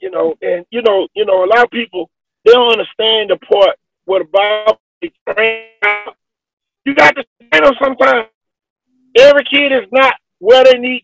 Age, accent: 40-59, American